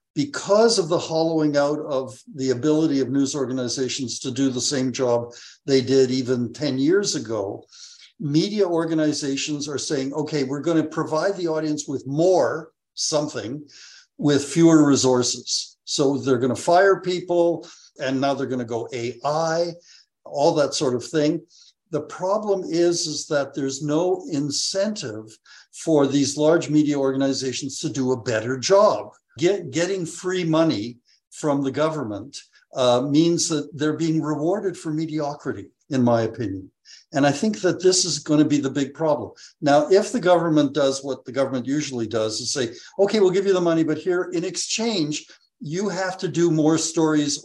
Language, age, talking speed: English, 60-79, 165 wpm